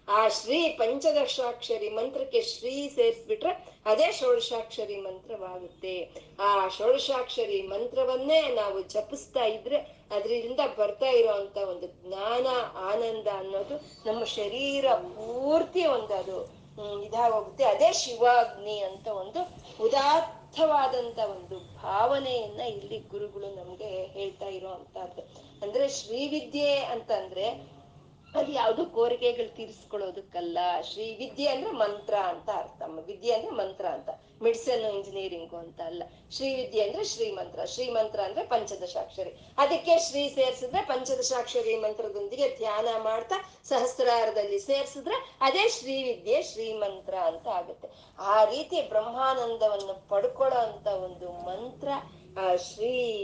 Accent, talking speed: native, 100 wpm